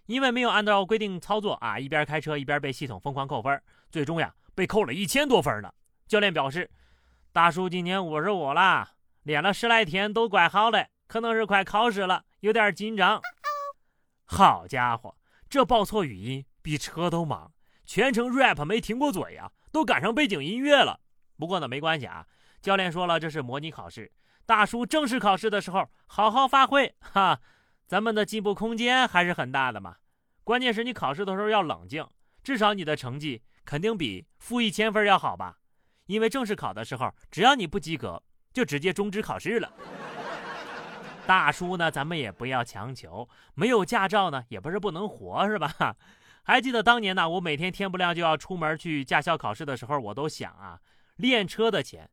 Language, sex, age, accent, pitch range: Chinese, male, 30-49, native, 145-220 Hz